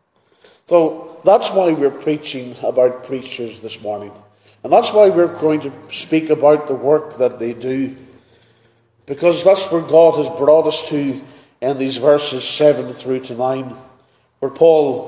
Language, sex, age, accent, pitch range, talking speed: English, male, 40-59, Irish, 130-160 Hz, 155 wpm